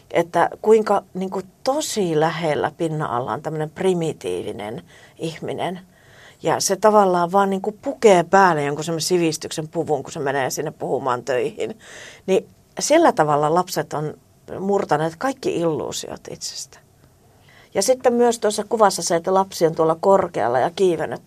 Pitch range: 155-190 Hz